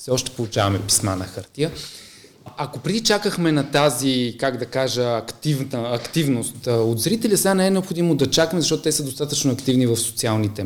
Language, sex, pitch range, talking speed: Bulgarian, male, 105-140 Hz, 175 wpm